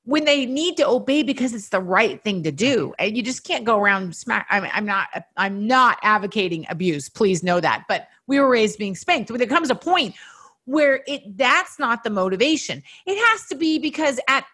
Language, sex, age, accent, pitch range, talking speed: English, female, 40-59, American, 195-275 Hz, 215 wpm